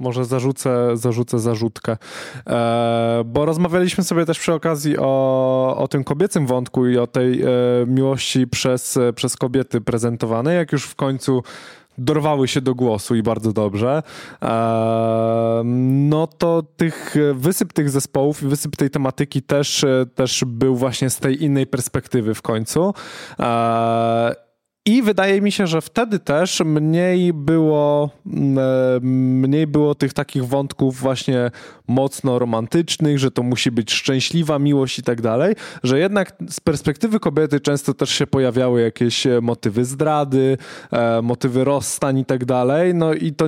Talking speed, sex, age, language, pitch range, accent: 135 wpm, male, 20-39, Polish, 125-155 Hz, native